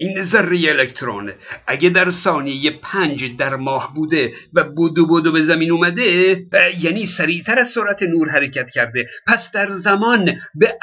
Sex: male